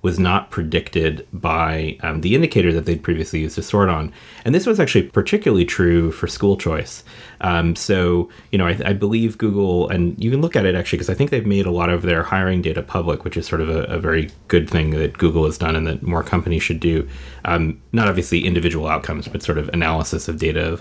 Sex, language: male, English